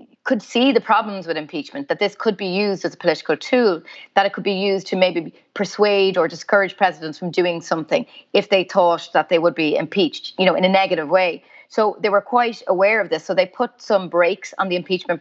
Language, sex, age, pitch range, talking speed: English, female, 30-49, 170-200 Hz, 230 wpm